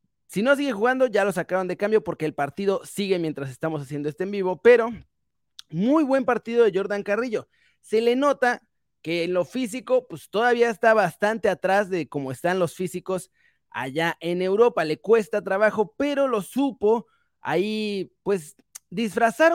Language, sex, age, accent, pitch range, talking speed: Spanish, male, 30-49, Mexican, 170-235 Hz, 170 wpm